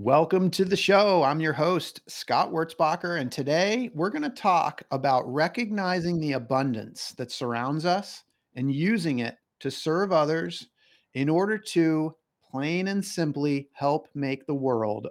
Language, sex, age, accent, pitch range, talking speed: English, male, 40-59, American, 135-175 Hz, 150 wpm